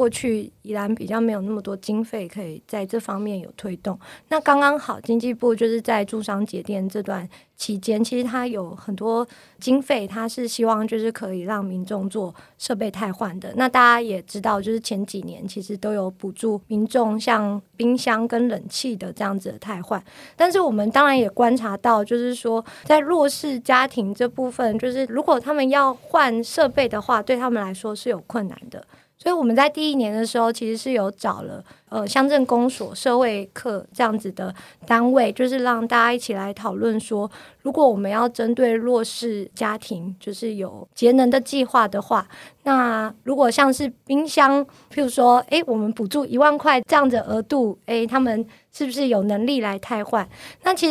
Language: Chinese